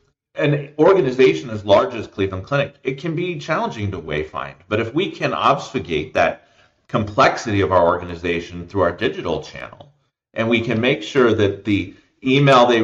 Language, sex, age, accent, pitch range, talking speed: English, male, 40-59, American, 95-115 Hz, 170 wpm